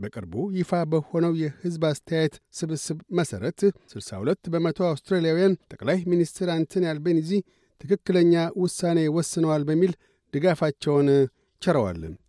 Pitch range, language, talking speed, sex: 150-175 Hz, Amharic, 95 wpm, male